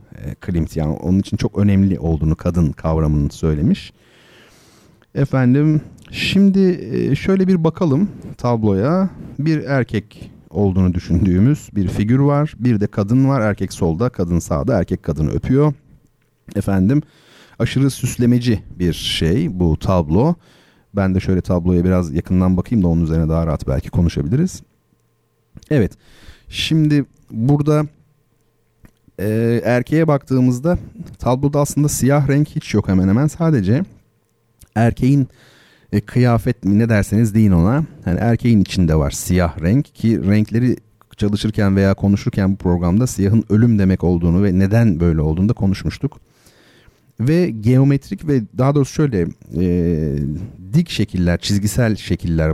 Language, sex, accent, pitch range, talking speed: Turkish, male, native, 90-135 Hz, 125 wpm